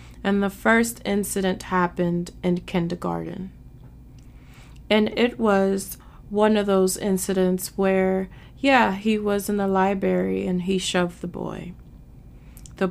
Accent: American